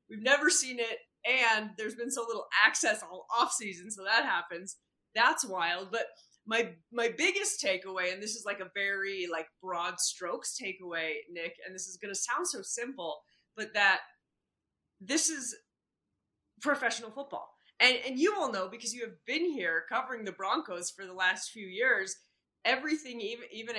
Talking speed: 170 wpm